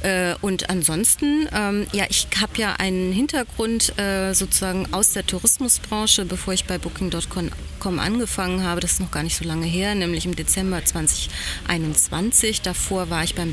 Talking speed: 160 wpm